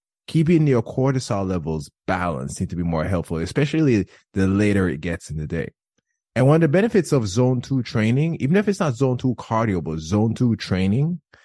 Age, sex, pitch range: 20-39, male, 95-145 Hz